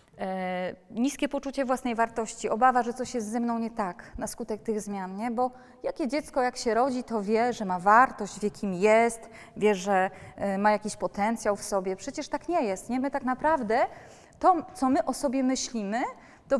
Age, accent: 20-39, native